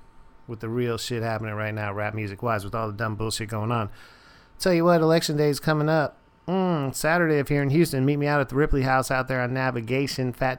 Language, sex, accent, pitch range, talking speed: English, male, American, 120-140 Hz, 240 wpm